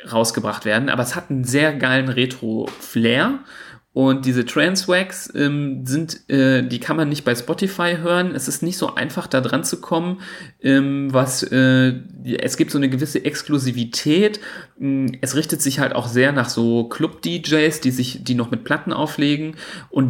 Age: 40-59